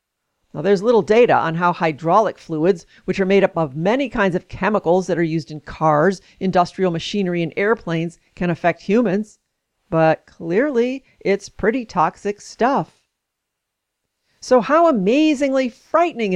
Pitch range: 175-225 Hz